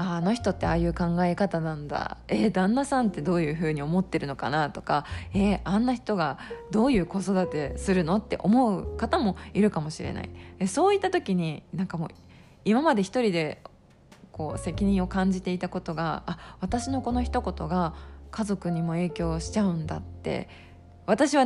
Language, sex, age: Japanese, female, 20-39